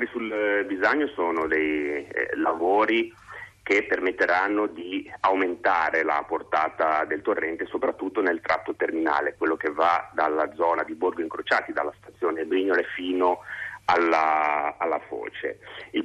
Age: 30-49